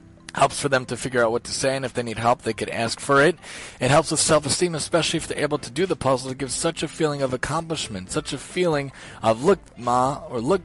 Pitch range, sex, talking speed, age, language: 125-150 Hz, male, 265 wpm, 30-49, English